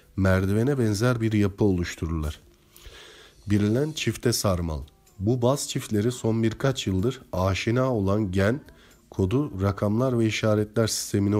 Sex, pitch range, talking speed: male, 95-120 Hz, 115 wpm